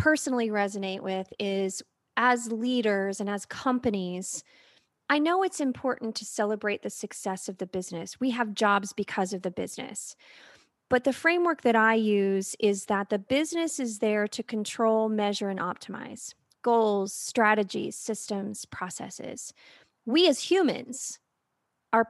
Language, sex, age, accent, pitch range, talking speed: English, female, 30-49, American, 210-265 Hz, 140 wpm